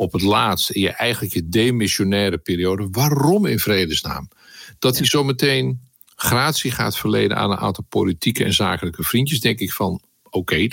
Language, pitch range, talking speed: Dutch, 95-125 Hz, 170 wpm